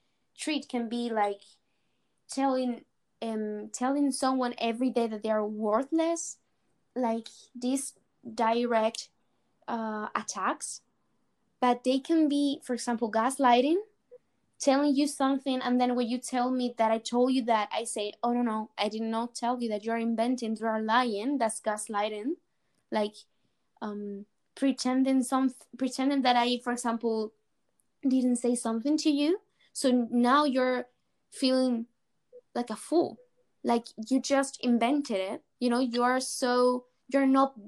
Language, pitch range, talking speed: English, 230-270 Hz, 145 wpm